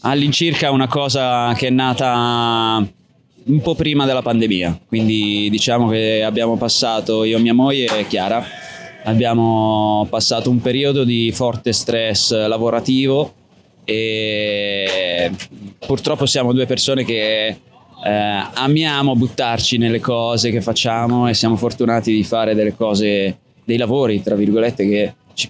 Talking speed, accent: 130 wpm, native